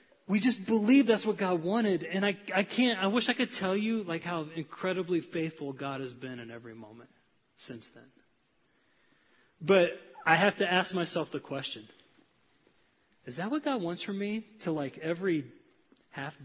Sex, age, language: male, 30-49, English